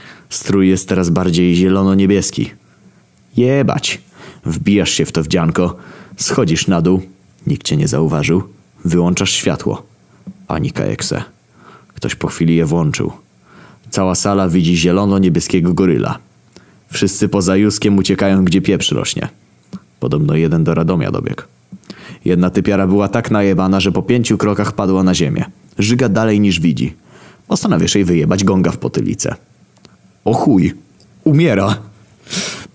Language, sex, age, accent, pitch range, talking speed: Polish, male, 20-39, native, 85-100 Hz, 130 wpm